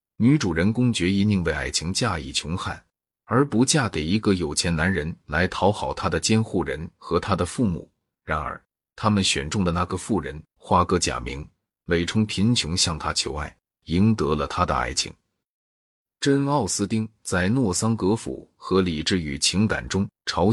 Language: Chinese